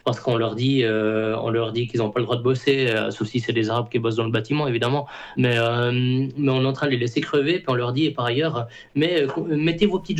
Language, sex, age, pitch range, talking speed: French, male, 20-39, 115-140 Hz, 300 wpm